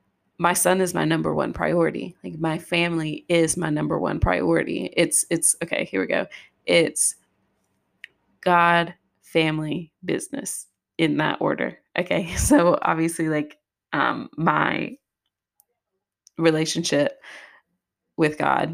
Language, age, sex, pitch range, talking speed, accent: English, 20-39, female, 150-175 Hz, 120 wpm, American